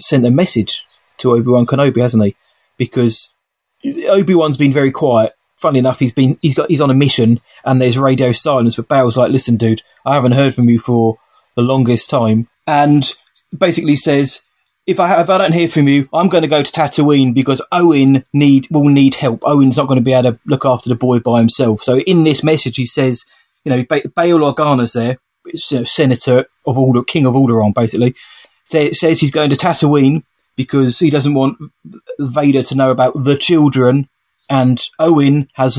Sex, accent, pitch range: male, British, 125-145 Hz